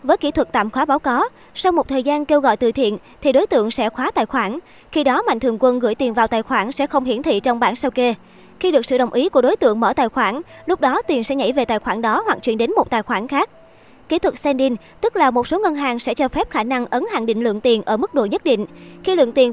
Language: Vietnamese